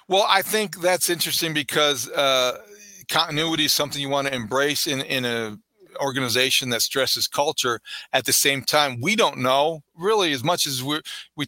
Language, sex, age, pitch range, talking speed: English, male, 40-59, 130-155 Hz, 180 wpm